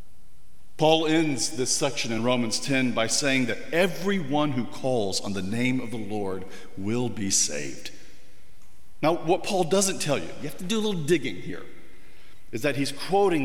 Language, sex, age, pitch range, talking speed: English, male, 50-69, 115-160 Hz, 180 wpm